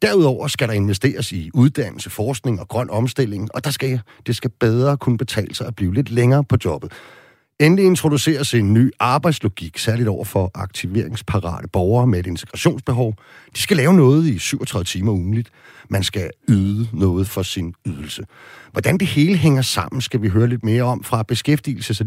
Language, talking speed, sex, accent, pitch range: Danish, 180 wpm, male, native, 105-135 Hz